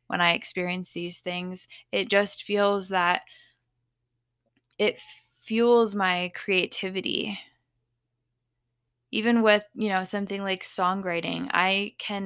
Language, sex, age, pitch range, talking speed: English, female, 10-29, 125-195 Hz, 110 wpm